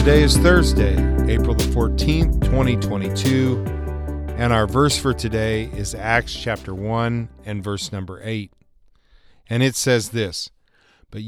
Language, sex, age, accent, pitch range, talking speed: English, male, 40-59, American, 100-130 Hz, 135 wpm